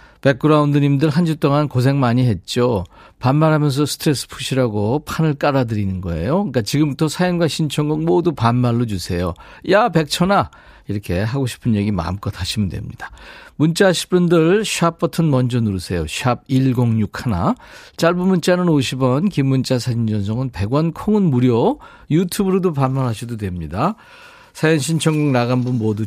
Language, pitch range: Korean, 110-155 Hz